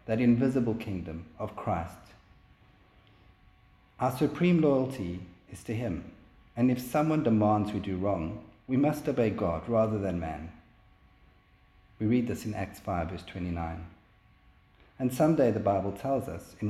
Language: English